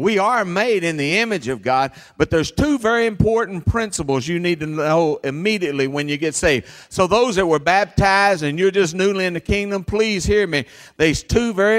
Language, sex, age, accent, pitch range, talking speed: English, male, 50-69, American, 155-235 Hz, 210 wpm